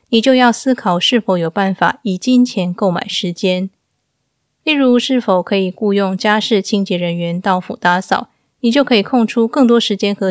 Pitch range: 185-225 Hz